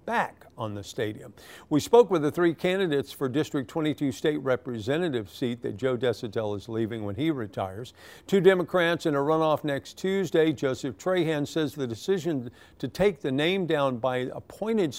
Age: 50-69